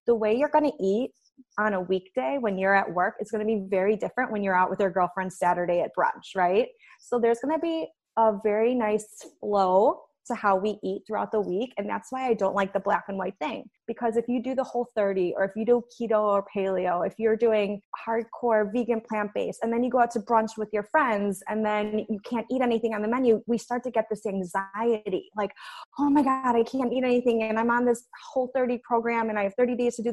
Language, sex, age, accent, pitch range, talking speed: English, female, 20-39, American, 200-240 Hz, 240 wpm